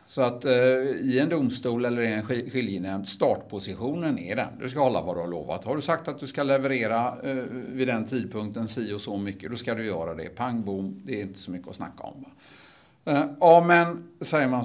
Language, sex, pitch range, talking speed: Swedish, male, 95-130 Hz, 220 wpm